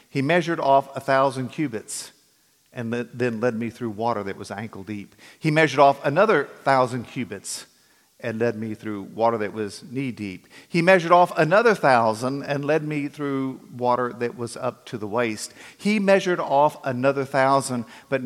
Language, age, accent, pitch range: English, 50-69, American, 115-140 Hz